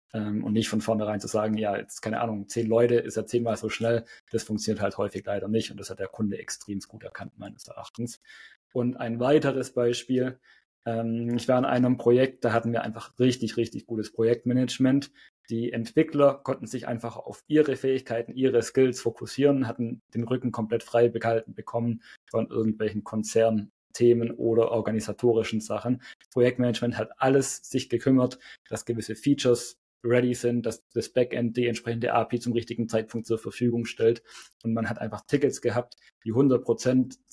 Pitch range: 110-125 Hz